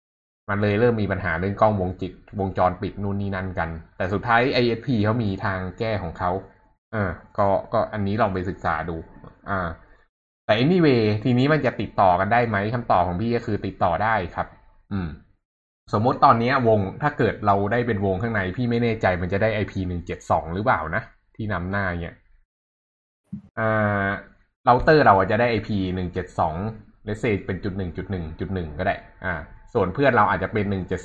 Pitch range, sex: 90-110 Hz, male